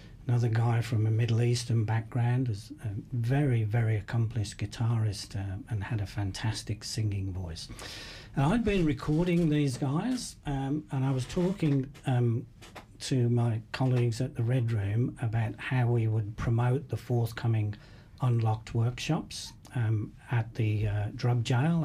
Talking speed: 150 wpm